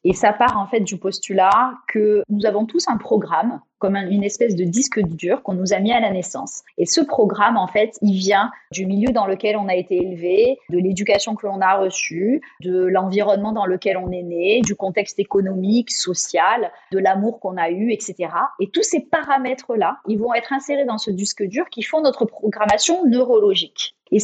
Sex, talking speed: female, 205 wpm